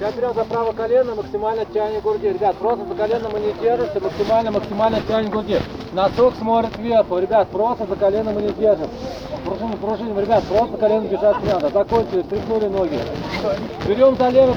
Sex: male